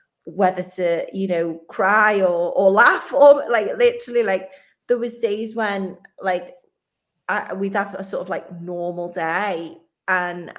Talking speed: 155 wpm